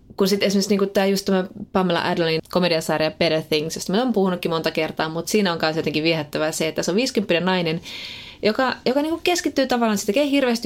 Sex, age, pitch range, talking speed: female, 20-39, 160-215 Hz, 210 wpm